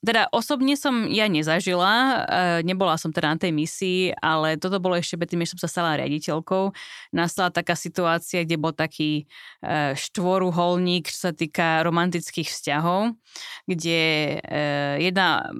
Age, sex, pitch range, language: 20-39, female, 165-195 Hz, Slovak